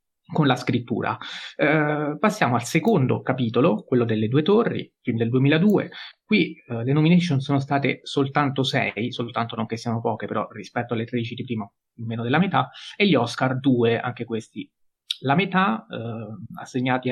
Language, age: Italian, 30-49